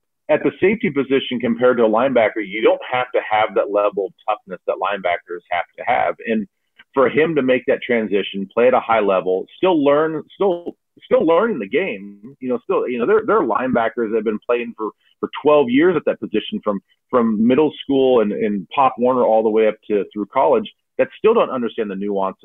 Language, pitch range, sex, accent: English, 105-155 Hz, male, American